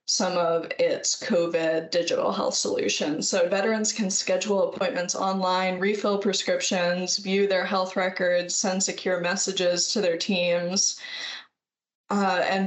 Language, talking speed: English, 130 wpm